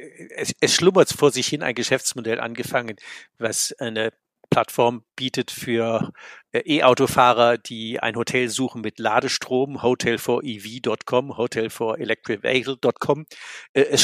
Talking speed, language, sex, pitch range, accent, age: 105 wpm, German, male, 120-145 Hz, German, 50-69